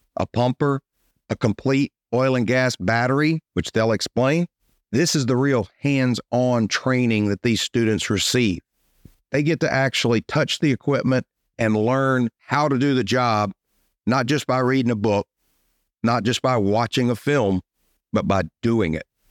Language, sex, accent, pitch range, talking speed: English, male, American, 110-135 Hz, 160 wpm